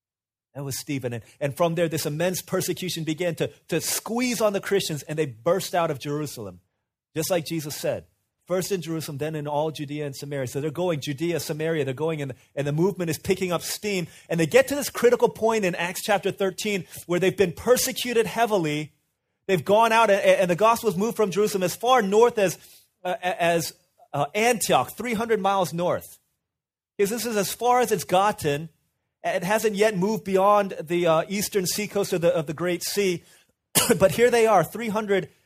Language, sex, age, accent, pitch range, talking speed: English, male, 30-49, American, 155-200 Hz, 195 wpm